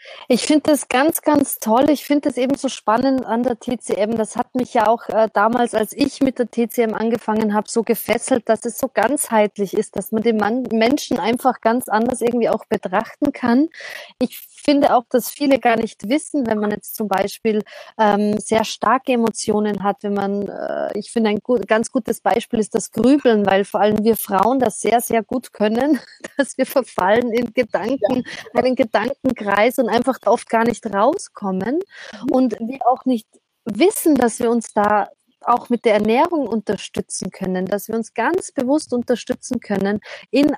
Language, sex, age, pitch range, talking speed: German, female, 30-49, 220-270 Hz, 185 wpm